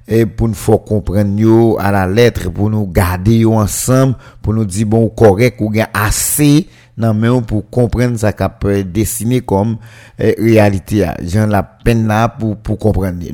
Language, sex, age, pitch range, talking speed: French, male, 50-69, 100-120 Hz, 160 wpm